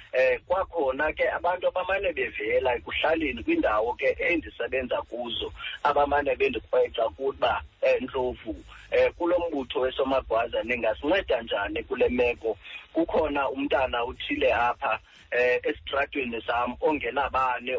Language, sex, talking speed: English, male, 140 wpm